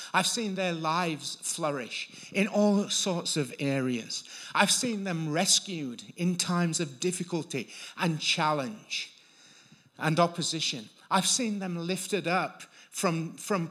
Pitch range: 130-180 Hz